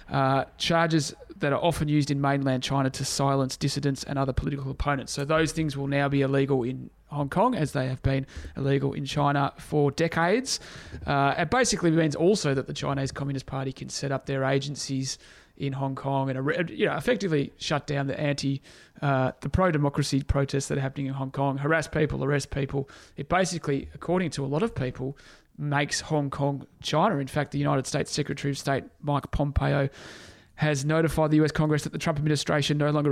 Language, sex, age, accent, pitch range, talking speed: English, male, 30-49, Australian, 135-150 Hz, 195 wpm